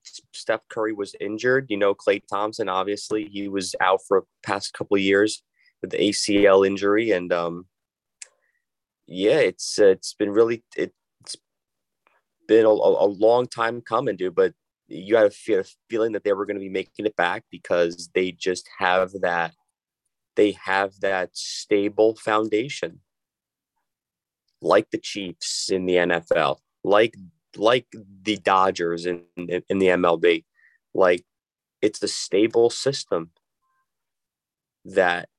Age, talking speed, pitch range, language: 30-49, 140 wpm, 95-120 Hz, English